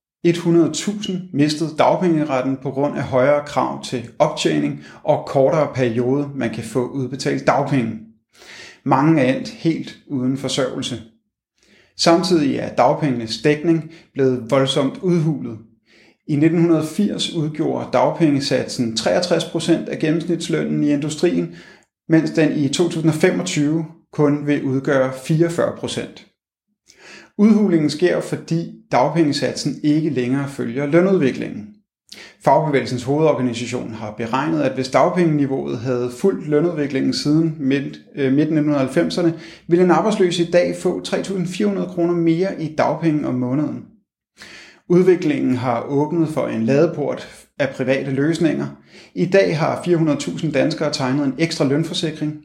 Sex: male